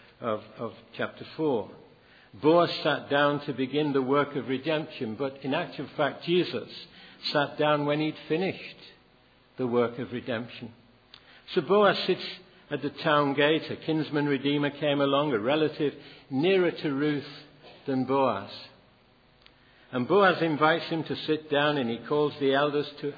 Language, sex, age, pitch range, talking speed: English, male, 60-79, 125-155 Hz, 155 wpm